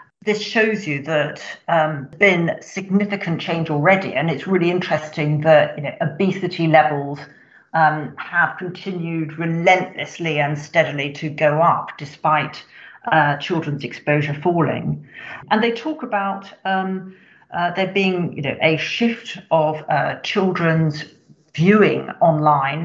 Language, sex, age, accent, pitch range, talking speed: English, female, 50-69, British, 155-195 Hz, 120 wpm